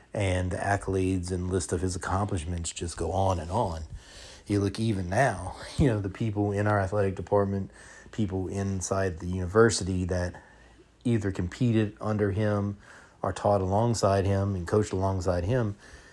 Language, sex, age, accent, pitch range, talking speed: English, male, 30-49, American, 95-110 Hz, 155 wpm